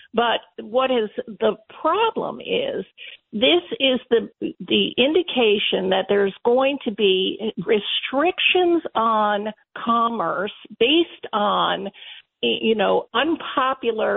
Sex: female